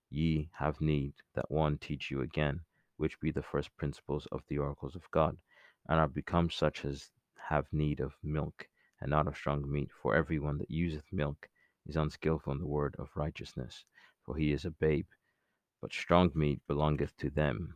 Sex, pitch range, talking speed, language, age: male, 70-80 Hz, 185 wpm, English, 30-49